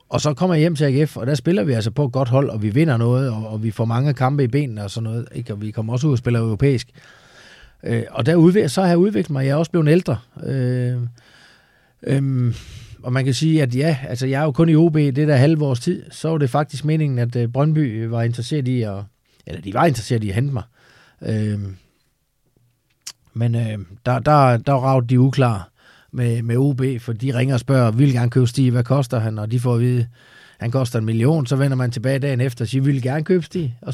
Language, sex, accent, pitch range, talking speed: Danish, male, native, 115-140 Hz, 240 wpm